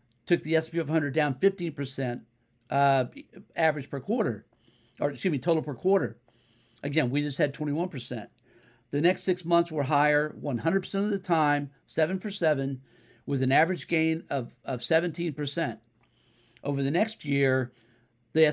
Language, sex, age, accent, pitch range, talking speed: English, male, 50-69, American, 125-165 Hz, 155 wpm